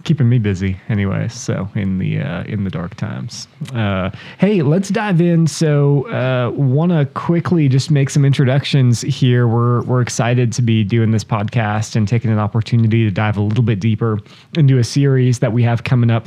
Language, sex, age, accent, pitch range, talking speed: English, male, 20-39, American, 105-130 Hz, 195 wpm